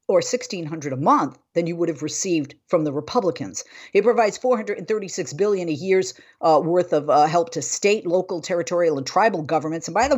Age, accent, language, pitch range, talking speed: 50-69, American, English, 165-230 Hz, 195 wpm